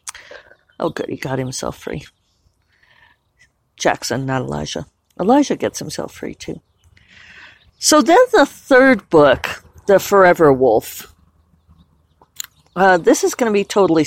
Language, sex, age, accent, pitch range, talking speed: English, female, 50-69, American, 140-215 Hz, 125 wpm